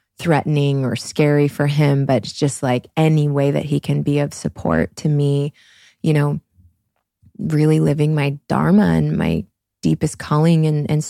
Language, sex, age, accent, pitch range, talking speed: English, female, 20-39, American, 140-160 Hz, 160 wpm